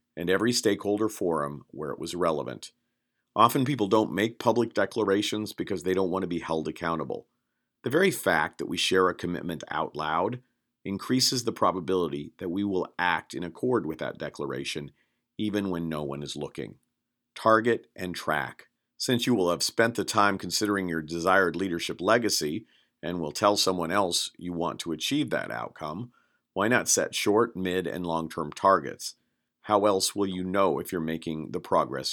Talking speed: 175 wpm